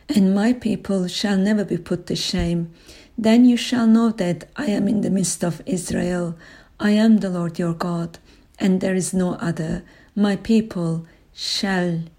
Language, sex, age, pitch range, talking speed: English, female, 50-69, 170-210 Hz, 170 wpm